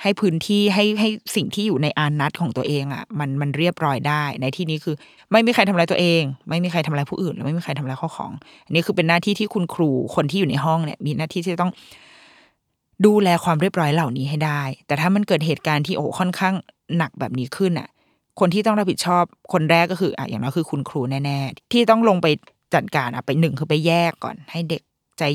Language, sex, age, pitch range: Thai, female, 20-39, 150-190 Hz